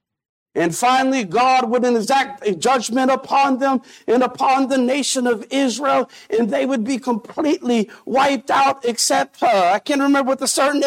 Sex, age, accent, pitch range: male, 50-69, American, 220-305 Hz